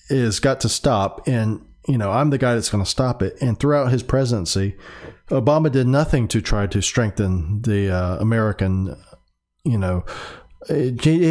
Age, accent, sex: 40-59, American, male